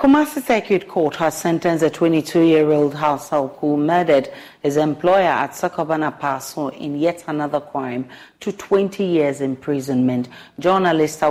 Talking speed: 135 wpm